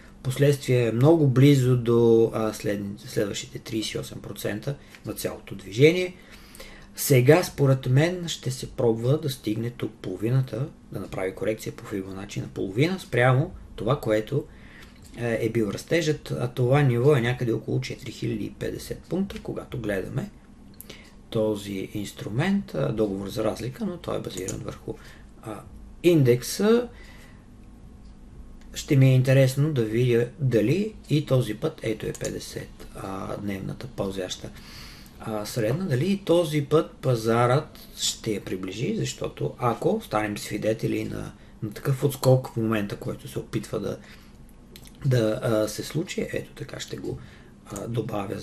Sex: male